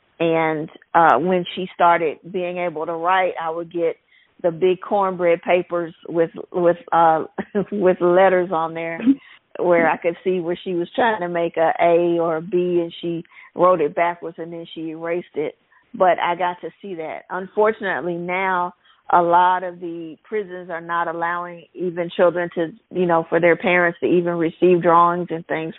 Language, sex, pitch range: English, female, 165-180 Hz